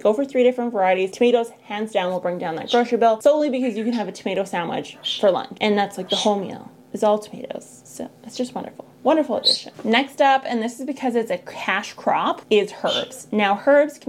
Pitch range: 195-250 Hz